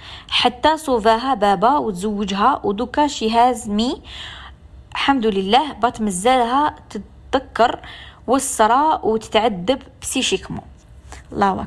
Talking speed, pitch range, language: 85 wpm, 185-225 Hz, Arabic